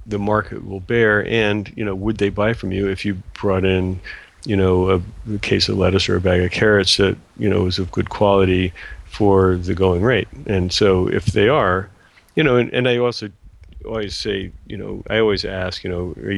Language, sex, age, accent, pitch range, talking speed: English, male, 40-59, American, 90-105 Hz, 220 wpm